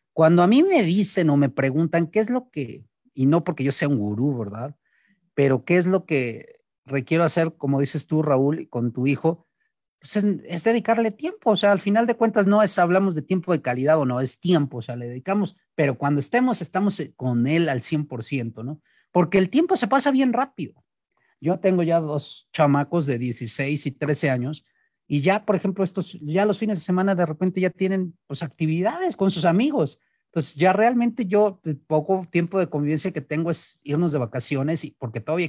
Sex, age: male, 40-59